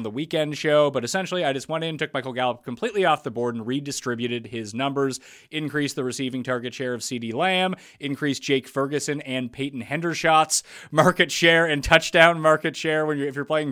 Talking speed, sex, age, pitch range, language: 195 wpm, male, 30-49, 125-155 Hz, English